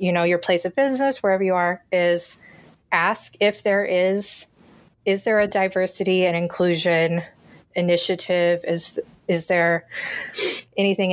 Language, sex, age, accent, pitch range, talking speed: English, female, 20-39, American, 175-195 Hz, 135 wpm